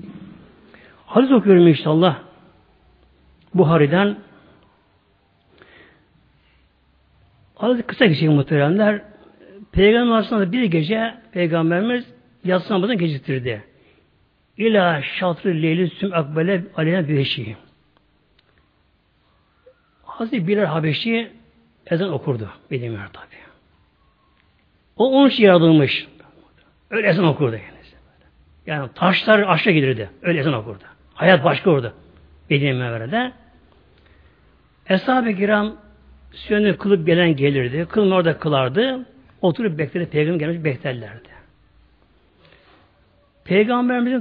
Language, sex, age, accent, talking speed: Turkish, male, 60-79, native, 85 wpm